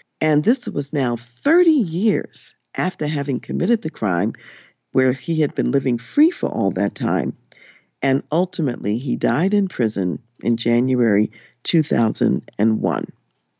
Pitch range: 125-195 Hz